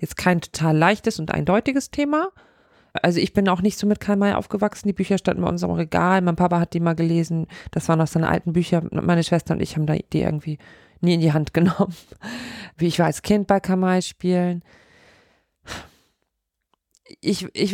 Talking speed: 195 wpm